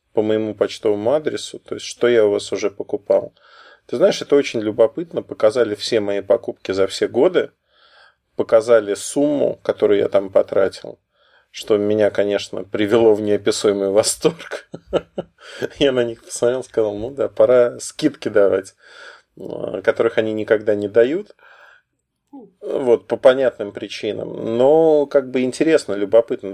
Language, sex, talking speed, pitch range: Russian, male, 140 wpm, 110-180 Hz